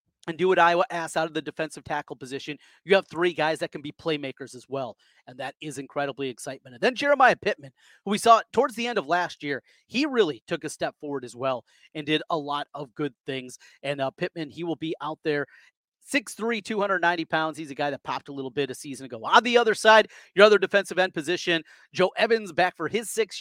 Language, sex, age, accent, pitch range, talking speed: English, male, 30-49, American, 145-190 Hz, 235 wpm